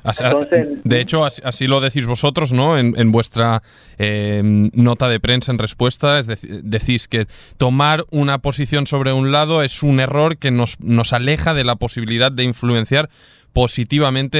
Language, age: Spanish, 20-39